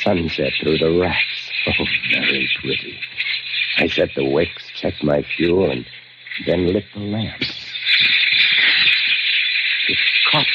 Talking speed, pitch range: 120 wpm, 105-135 Hz